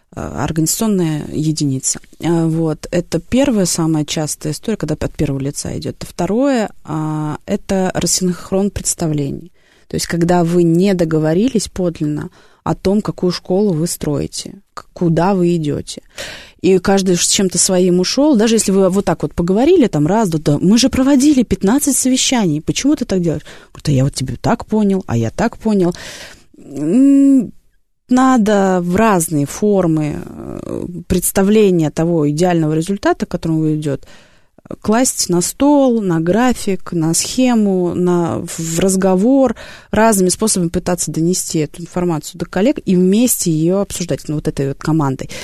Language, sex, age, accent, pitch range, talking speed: Russian, female, 20-39, native, 160-210 Hz, 140 wpm